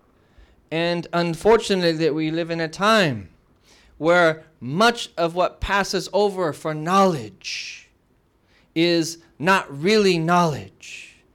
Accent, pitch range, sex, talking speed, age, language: American, 155-190 Hz, male, 105 wpm, 30-49, English